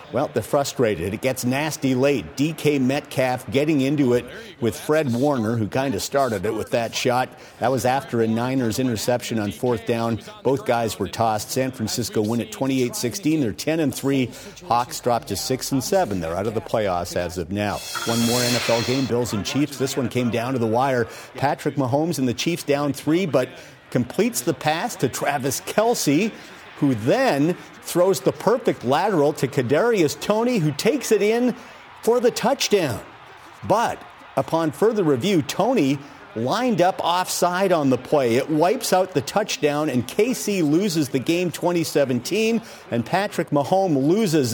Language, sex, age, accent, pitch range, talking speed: English, male, 50-69, American, 120-165 Hz, 170 wpm